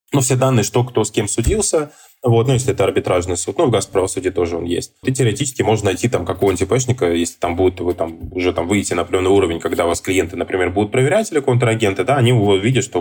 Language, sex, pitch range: Russian, male, 100-135 Hz